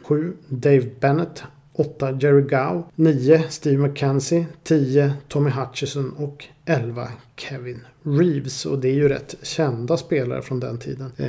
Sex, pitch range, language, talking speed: male, 130-150 Hz, Swedish, 135 wpm